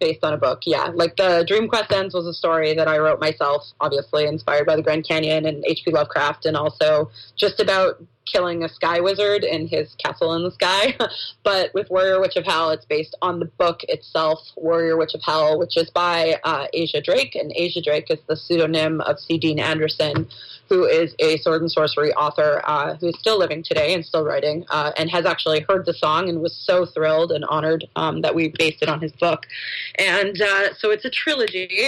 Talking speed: 215 wpm